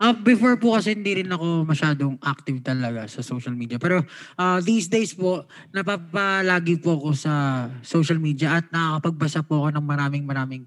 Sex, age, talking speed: male, 20-39, 175 wpm